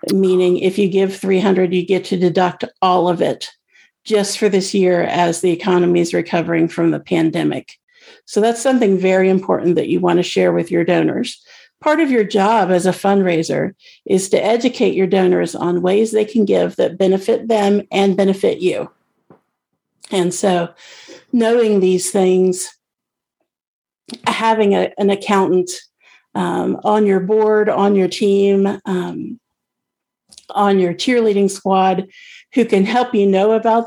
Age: 50-69